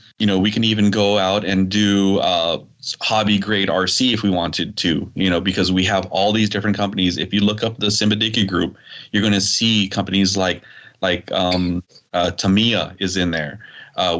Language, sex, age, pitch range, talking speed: English, male, 20-39, 90-105 Hz, 195 wpm